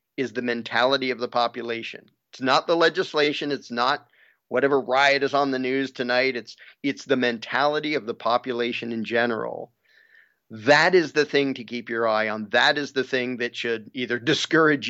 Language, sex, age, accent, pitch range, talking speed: English, male, 40-59, American, 115-135 Hz, 180 wpm